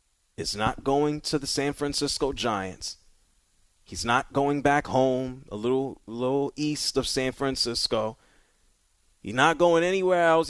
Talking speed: 145 wpm